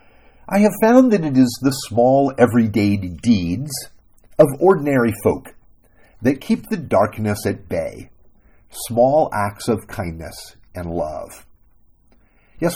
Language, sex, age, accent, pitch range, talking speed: English, male, 50-69, American, 100-145 Hz, 120 wpm